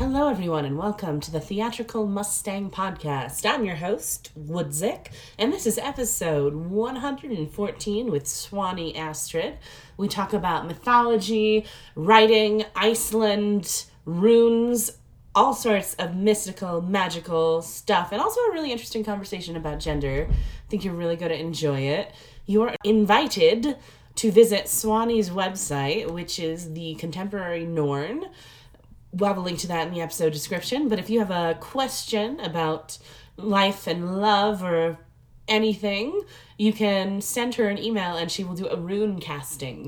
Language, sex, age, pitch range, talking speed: English, female, 20-39, 165-220 Hz, 145 wpm